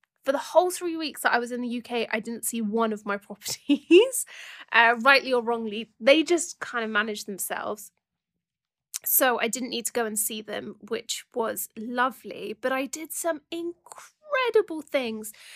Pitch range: 230-285 Hz